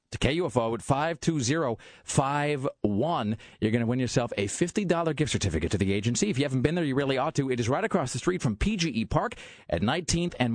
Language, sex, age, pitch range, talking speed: English, male, 40-59, 105-150 Hz, 210 wpm